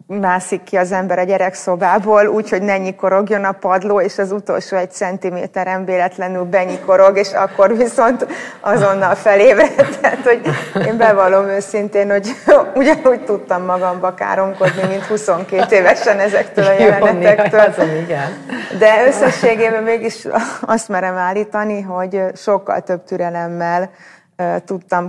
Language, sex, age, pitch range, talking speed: Hungarian, female, 30-49, 180-215 Hz, 120 wpm